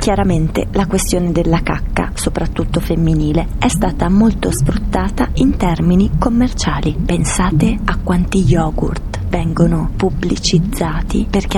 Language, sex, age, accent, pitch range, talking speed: Italian, female, 30-49, native, 170-215 Hz, 110 wpm